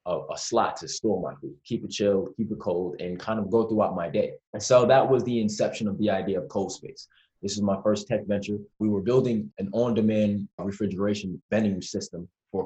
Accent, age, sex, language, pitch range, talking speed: American, 20-39, male, English, 95-115 Hz, 225 wpm